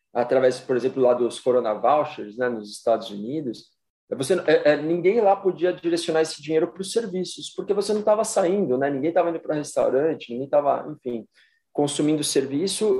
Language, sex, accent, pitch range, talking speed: Portuguese, male, Brazilian, 135-180 Hz, 170 wpm